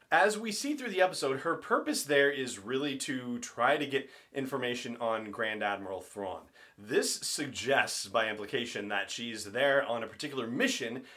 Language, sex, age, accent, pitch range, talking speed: English, male, 30-49, American, 105-140 Hz, 165 wpm